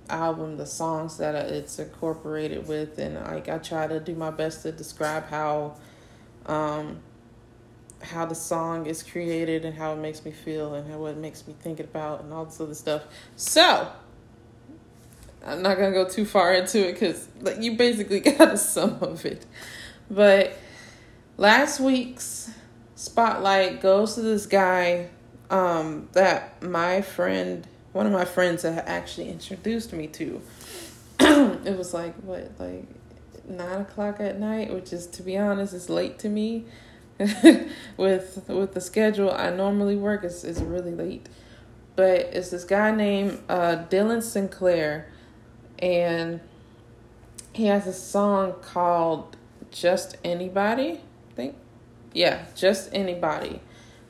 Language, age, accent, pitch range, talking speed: English, 20-39, American, 150-195 Hz, 145 wpm